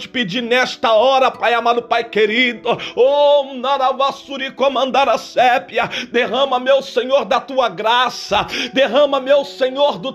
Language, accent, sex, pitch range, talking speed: Portuguese, Brazilian, male, 260-285 Hz, 130 wpm